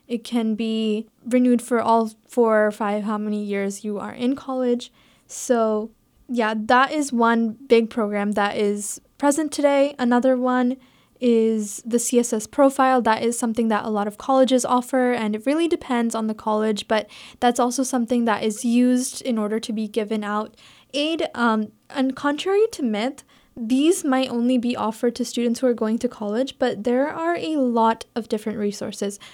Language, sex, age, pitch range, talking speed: English, female, 10-29, 220-260 Hz, 180 wpm